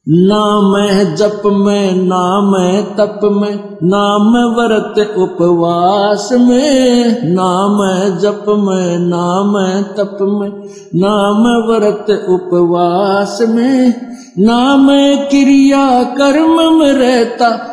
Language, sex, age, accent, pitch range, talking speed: Hindi, male, 50-69, native, 200-245 Hz, 85 wpm